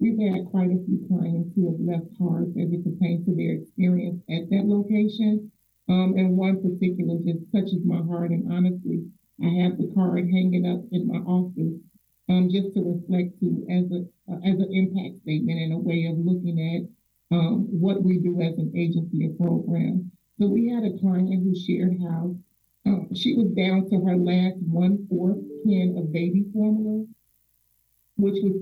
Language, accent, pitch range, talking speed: English, American, 180-200 Hz, 180 wpm